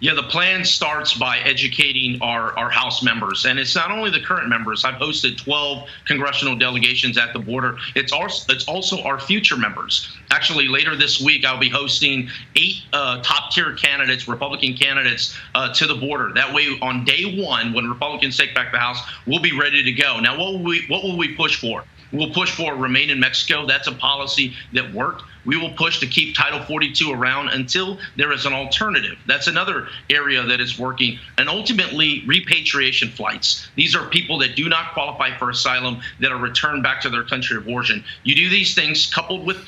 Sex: male